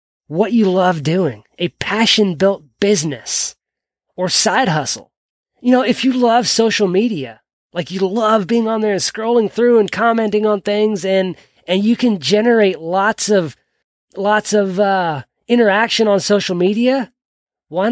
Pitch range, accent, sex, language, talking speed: 185-235 Hz, American, male, English, 155 wpm